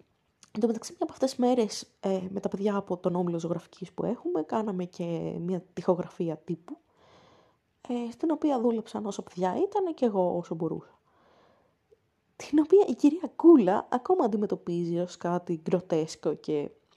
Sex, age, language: female, 20-39, Greek